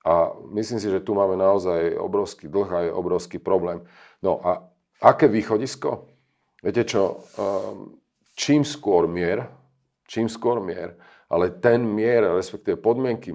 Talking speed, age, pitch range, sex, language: 135 wpm, 40-59, 90-115 Hz, male, Slovak